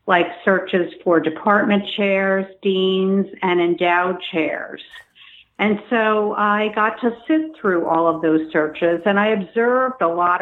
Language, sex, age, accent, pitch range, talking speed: English, female, 50-69, American, 180-250 Hz, 145 wpm